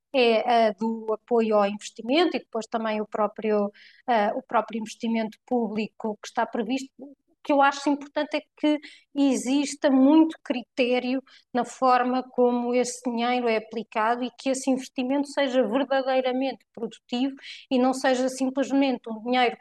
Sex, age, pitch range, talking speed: female, 20-39, 220-260 Hz, 155 wpm